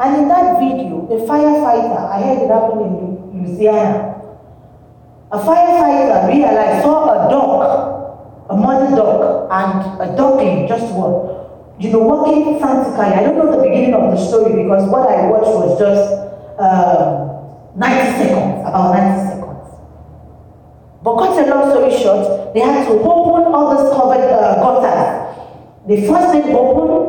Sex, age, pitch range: female, 40-59, 210-305 Hz